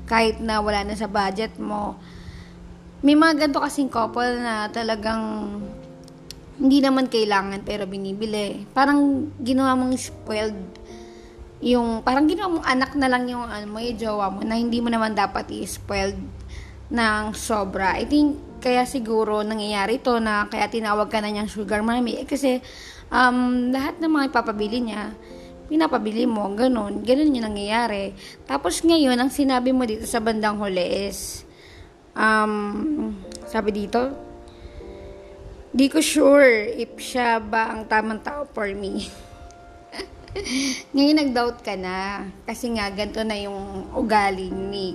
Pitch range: 205-255 Hz